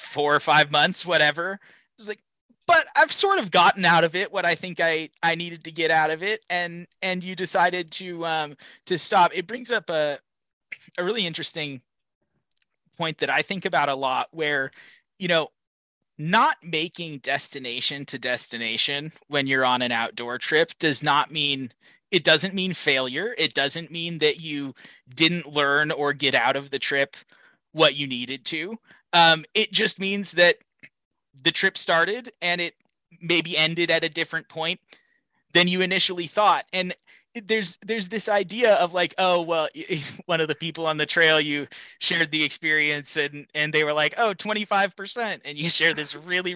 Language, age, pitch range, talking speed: English, 20-39, 150-190 Hz, 180 wpm